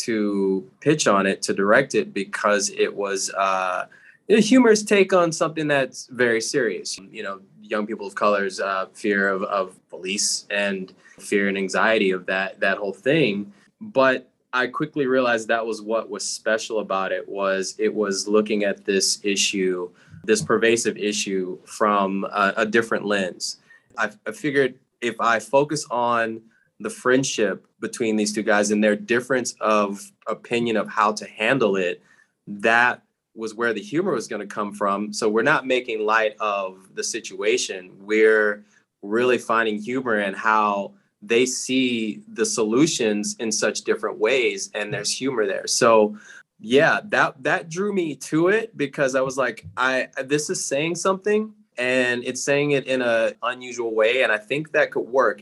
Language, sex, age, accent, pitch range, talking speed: English, male, 20-39, American, 105-145 Hz, 170 wpm